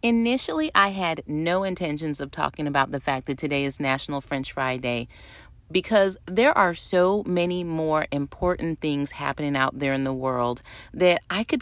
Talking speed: 170 wpm